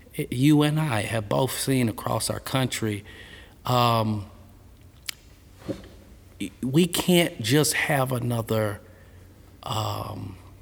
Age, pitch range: 50-69, 95-120 Hz